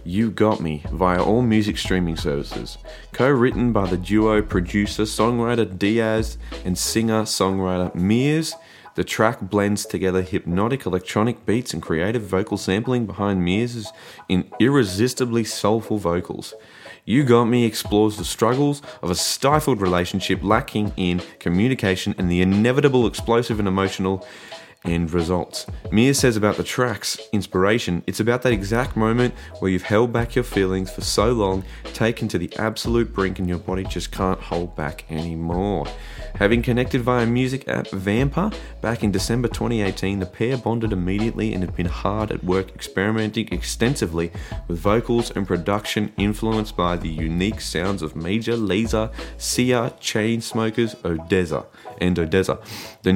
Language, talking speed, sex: English, 145 wpm, male